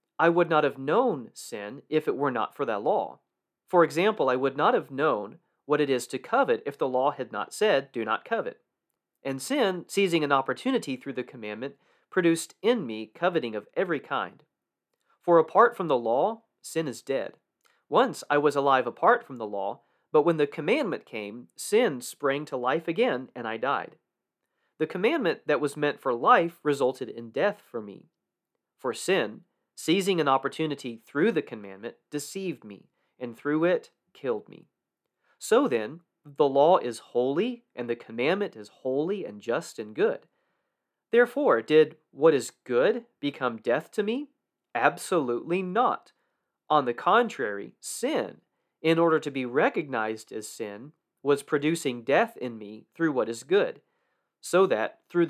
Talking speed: 165 wpm